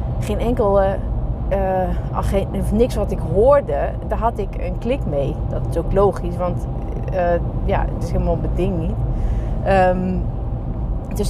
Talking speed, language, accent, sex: 140 wpm, Dutch, Dutch, female